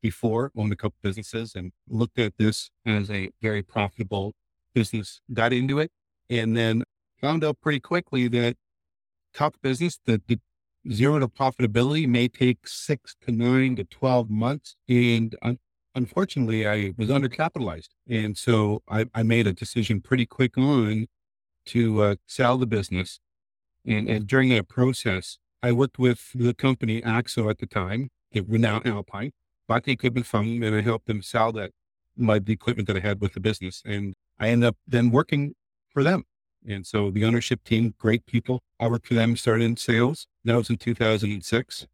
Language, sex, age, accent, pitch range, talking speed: English, male, 50-69, American, 105-125 Hz, 175 wpm